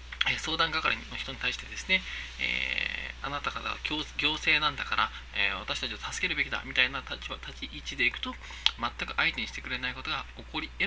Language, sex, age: Japanese, male, 20-39